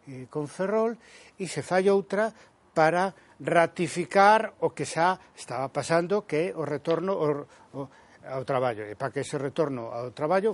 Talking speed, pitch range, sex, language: 165 wpm, 135-185 Hz, male, Spanish